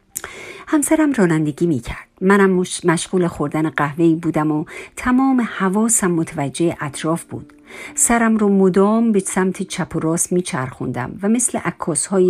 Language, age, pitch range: Persian, 50-69, 165-205 Hz